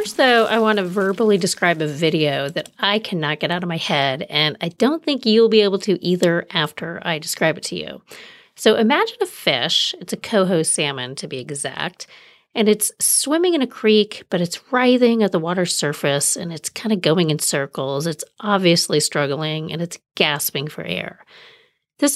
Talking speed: 195 wpm